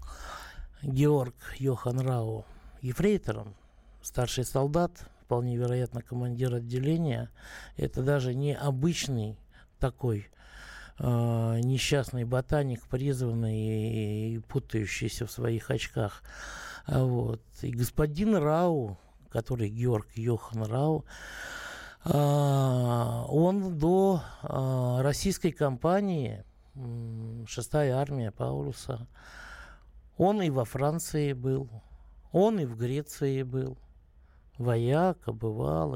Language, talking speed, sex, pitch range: Russian, 90 wpm, male, 115-145 Hz